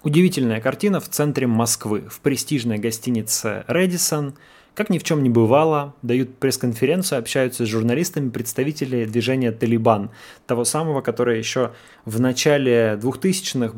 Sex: male